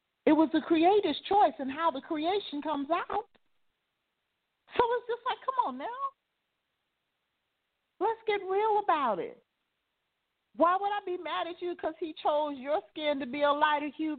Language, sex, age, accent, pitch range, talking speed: English, female, 40-59, American, 250-370 Hz, 170 wpm